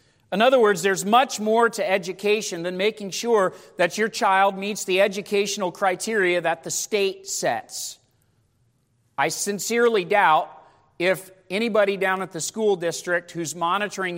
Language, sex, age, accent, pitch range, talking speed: English, male, 40-59, American, 145-200 Hz, 145 wpm